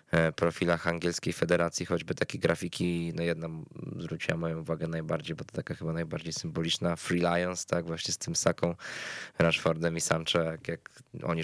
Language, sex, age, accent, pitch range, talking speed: Polish, male, 20-39, native, 85-90 Hz, 155 wpm